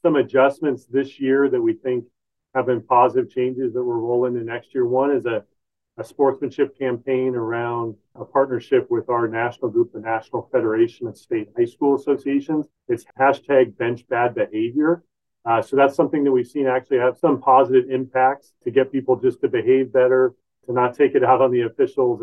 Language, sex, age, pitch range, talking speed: English, male, 40-59, 120-150 Hz, 190 wpm